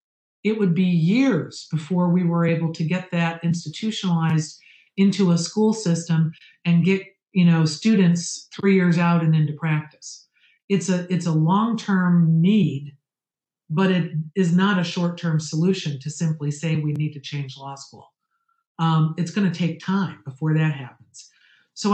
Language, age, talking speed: English, 50-69, 160 wpm